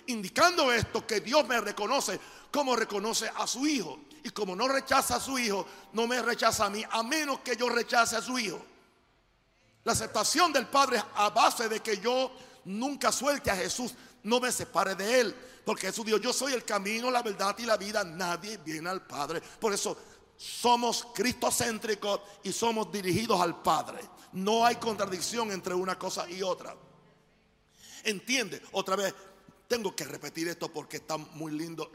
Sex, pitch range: male, 170-235 Hz